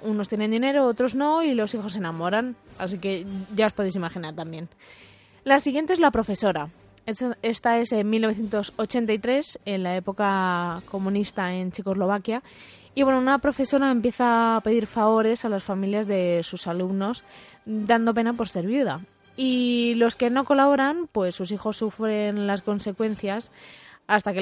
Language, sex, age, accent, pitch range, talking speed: Spanish, female, 20-39, Spanish, 195-235 Hz, 155 wpm